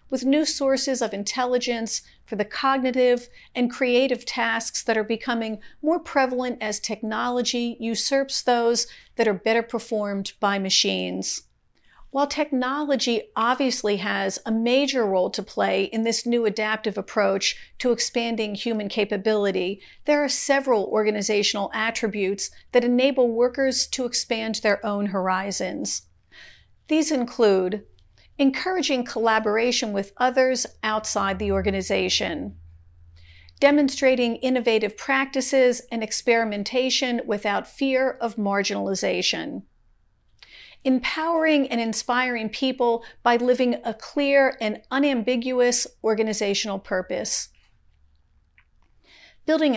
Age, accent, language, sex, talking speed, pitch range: 50-69, American, English, female, 105 wpm, 205-255 Hz